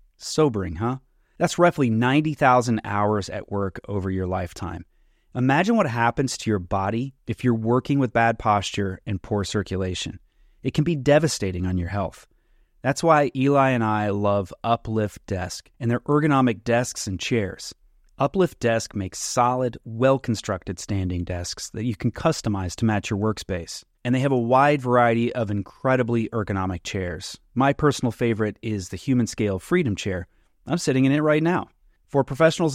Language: English